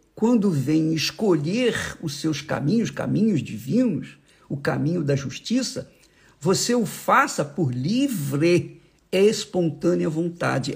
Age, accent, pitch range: 50-69, Brazilian, 165-245 Hz